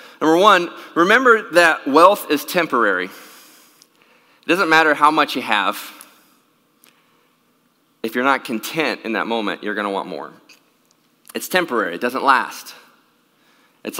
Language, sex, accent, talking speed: English, male, American, 135 wpm